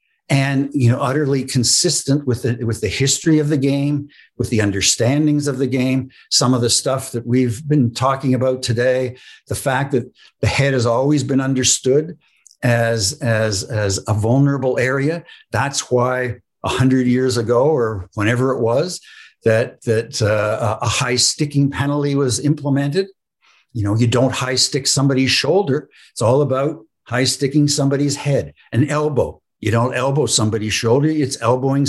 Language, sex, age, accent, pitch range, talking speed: English, male, 60-79, American, 120-140 Hz, 160 wpm